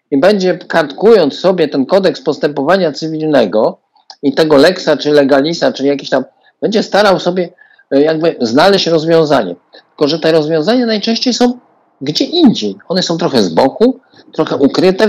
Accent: native